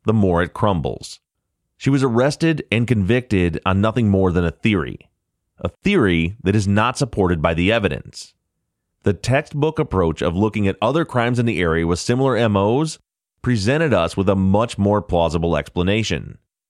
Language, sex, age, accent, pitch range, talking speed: English, male, 30-49, American, 85-120 Hz, 165 wpm